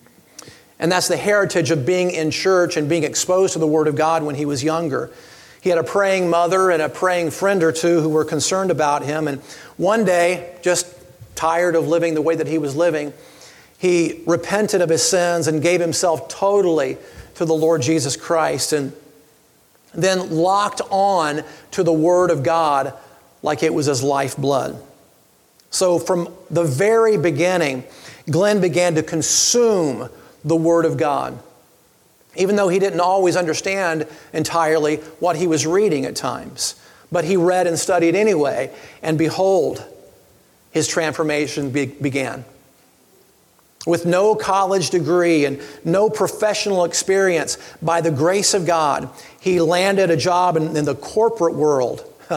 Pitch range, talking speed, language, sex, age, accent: 155-185 Hz, 155 wpm, English, male, 40-59, American